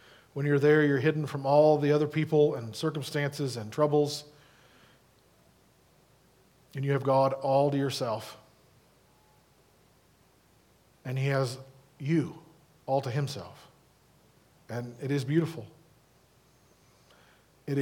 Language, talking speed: English, 110 wpm